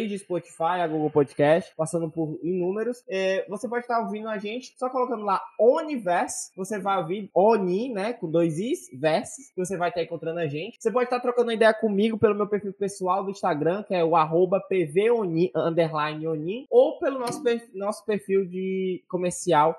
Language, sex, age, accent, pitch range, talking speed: Portuguese, male, 20-39, Brazilian, 145-195 Hz, 195 wpm